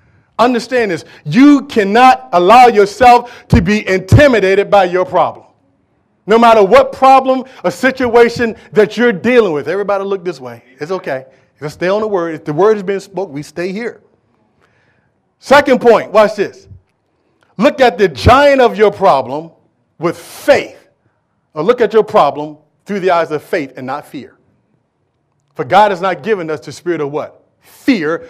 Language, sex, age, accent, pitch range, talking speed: English, male, 40-59, American, 180-255 Hz, 165 wpm